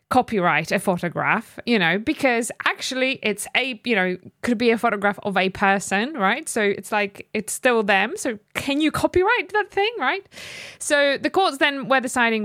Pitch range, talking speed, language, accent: 190-240 Hz, 185 wpm, English, British